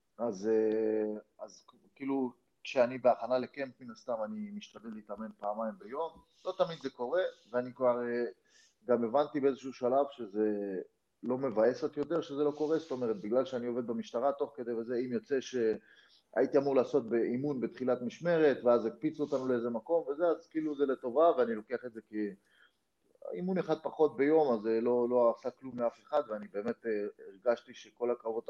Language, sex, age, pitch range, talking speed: Hebrew, male, 30-49, 110-145 Hz, 170 wpm